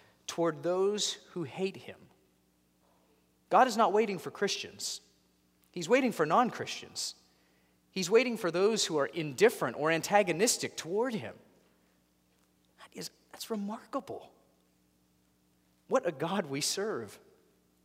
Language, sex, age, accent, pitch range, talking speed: English, male, 30-49, American, 120-200 Hz, 120 wpm